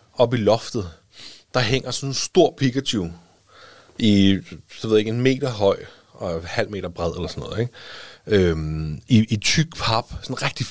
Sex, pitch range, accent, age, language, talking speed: male, 95-130 Hz, native, 30-49, Danish, 185 wpm